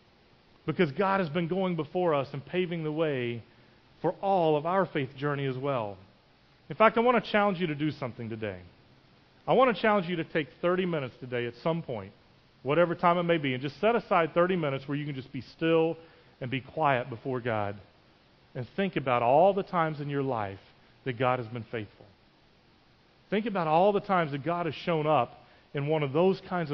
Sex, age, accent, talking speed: male, 40-59, American, 210 wpm